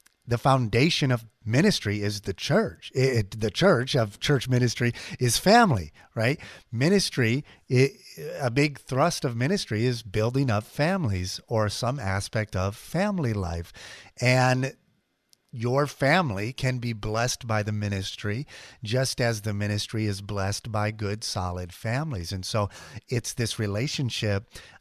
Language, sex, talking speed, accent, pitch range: English, male, 135 wpm, American, 105-140 Hz